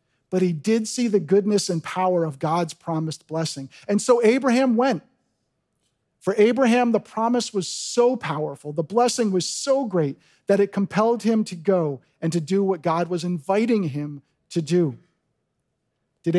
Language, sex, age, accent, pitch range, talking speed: English, male, 40-59, American, 160-215 Hz, 165 wpm